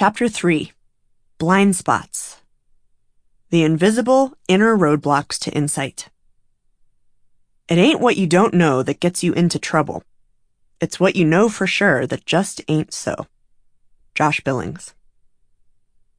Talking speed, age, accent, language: 120 wpm, 30-49, American, English